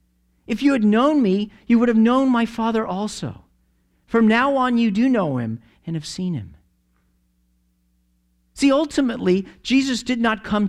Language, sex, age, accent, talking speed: English, male, 50-69, American, 165 wpm